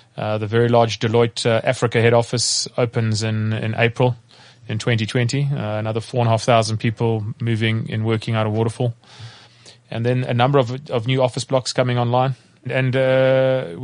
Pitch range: 115-125 Hz